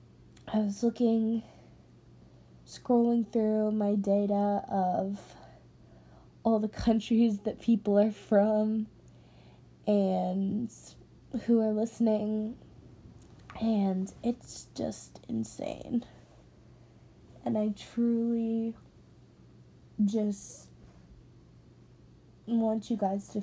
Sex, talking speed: female, 80 wpm